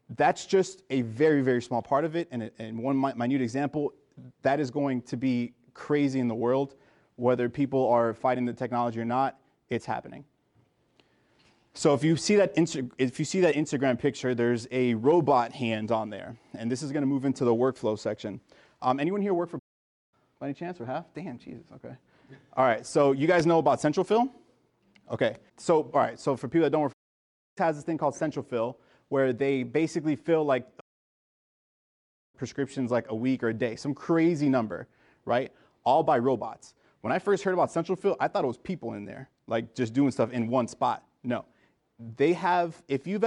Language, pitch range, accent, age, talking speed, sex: English, 125-155 Hz, American, 30-49, 200 wpm, male